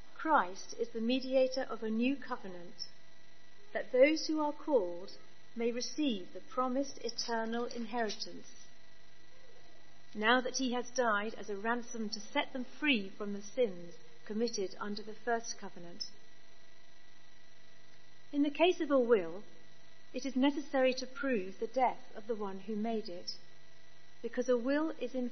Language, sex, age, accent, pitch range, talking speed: English, female, 40-59, British, 175-250 Hz, 150 wpm